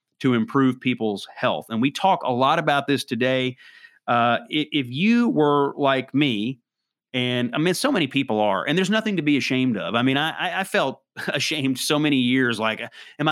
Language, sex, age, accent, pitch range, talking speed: English, male, 30-49, American, 120-145 Hz, 195 wpm